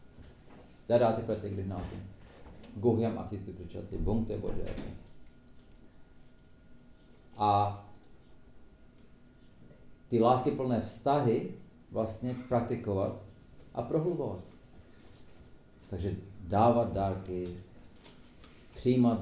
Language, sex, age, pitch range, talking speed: Czech, male, 50-69, 95-120 Hz, 55 wpm